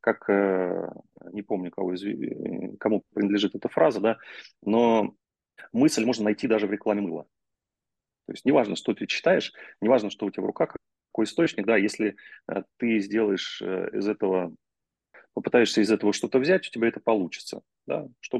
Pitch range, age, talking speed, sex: 100-120 Hz, 30-49, 155 wpm, male